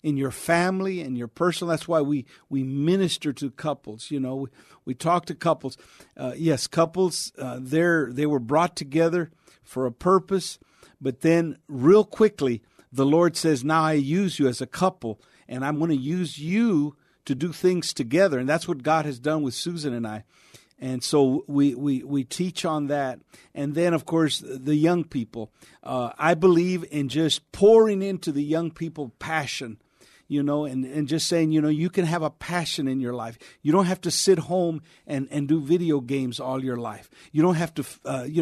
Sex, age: male, 50-69